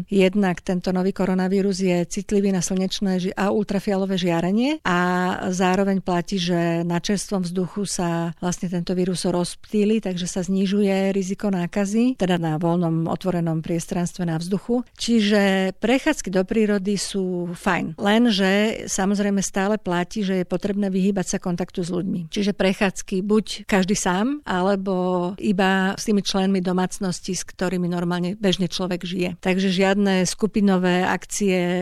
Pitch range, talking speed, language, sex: 180-200 Hz, 140 wpm, Slovak, female